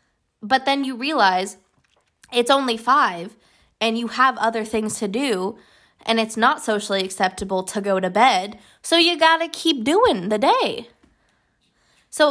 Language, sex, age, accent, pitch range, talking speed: English, female, 20-39, American, 210-290 Hz, 155 wpm